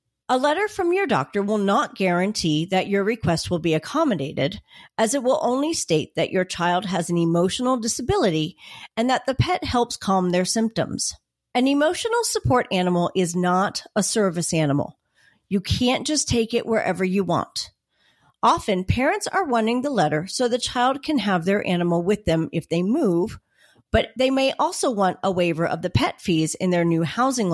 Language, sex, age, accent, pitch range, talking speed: English, female, 40-59, American, 180-260 Hz, 185 wpm